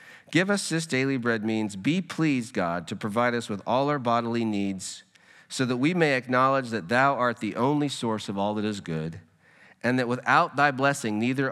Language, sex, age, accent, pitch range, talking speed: English, male, 50-69, American, 110-140 Hz, 205 wpm